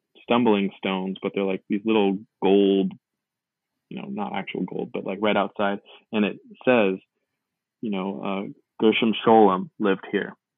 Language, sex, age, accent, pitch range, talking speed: English, male, 20-39, American, 100-120 Hz, 155 wpm